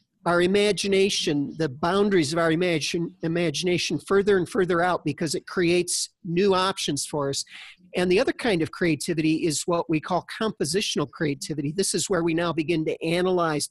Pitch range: 165-195 Hz